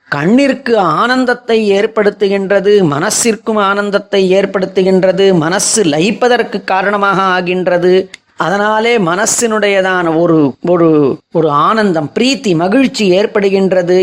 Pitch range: 170-210 Hz